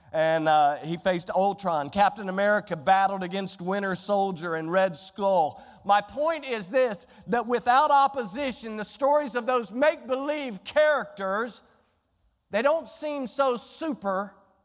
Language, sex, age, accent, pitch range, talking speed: English, male, 40-59, American, 195-245 Hz, 130 wpm